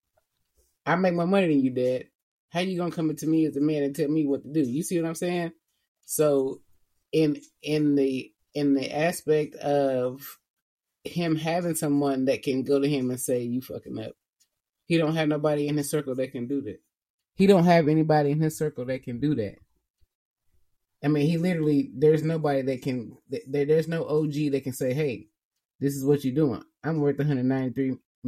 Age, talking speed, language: 20-39, 200 wpm, English